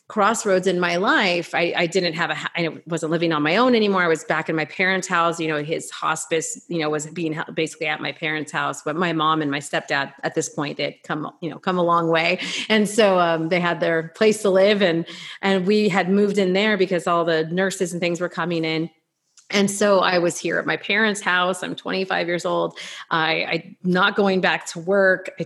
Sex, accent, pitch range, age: female, American, 160-195 Hz, 30-49